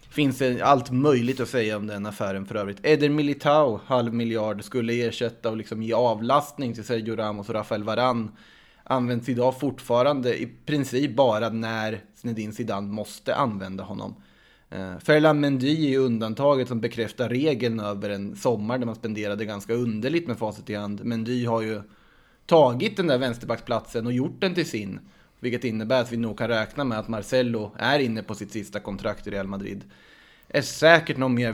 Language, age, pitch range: Swedish, 20-39, 110-130 Hz